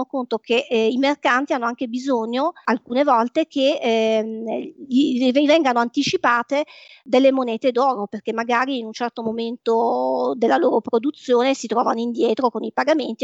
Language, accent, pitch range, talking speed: Italian, native, 230-275 Hz, 145 wpm